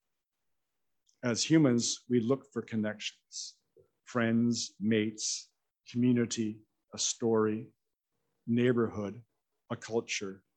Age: 50-69